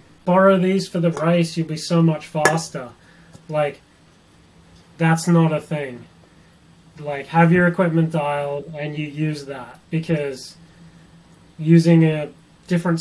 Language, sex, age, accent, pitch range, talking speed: English, male, 20-39, Australian, 145-170 Hz, 130 wpm